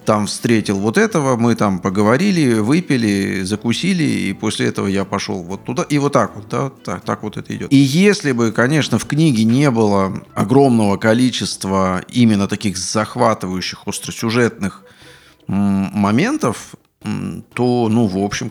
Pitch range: 100-135 Hz